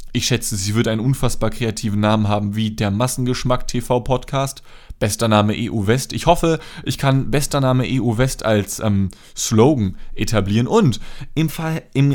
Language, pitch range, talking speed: German, 110-140 Hz, 140 wpm